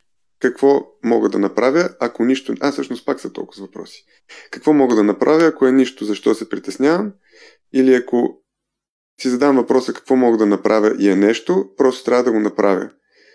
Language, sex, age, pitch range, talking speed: Bulgarian, male, 20-39, 105-135 Hz, 175 wpm